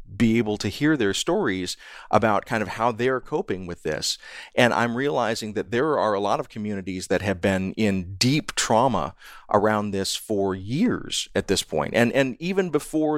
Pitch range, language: 100-125 Hz, English